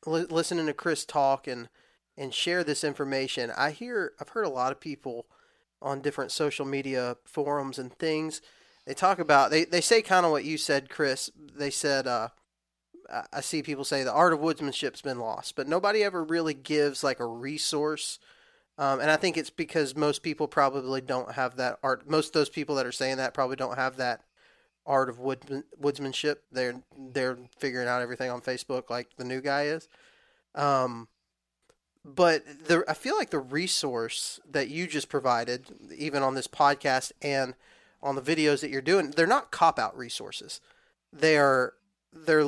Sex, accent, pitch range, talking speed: male, American, 130-155 Hz, 180 wpm